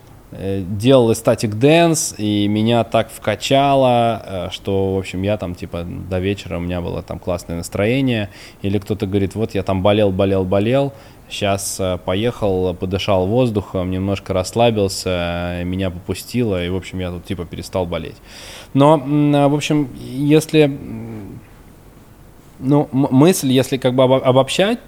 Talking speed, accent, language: 135 wpm, native, Russian